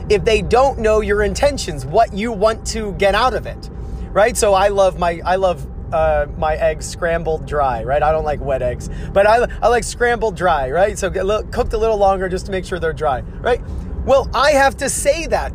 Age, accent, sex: 30-49, American, male